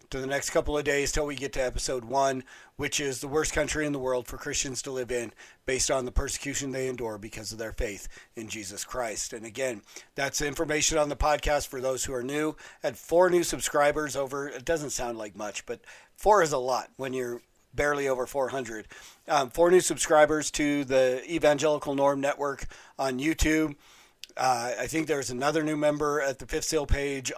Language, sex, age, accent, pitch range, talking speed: English, male, 40-59, American, 130-150 Hz, 205 wpm